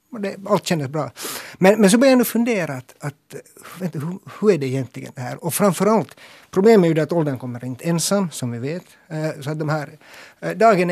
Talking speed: 215 wpm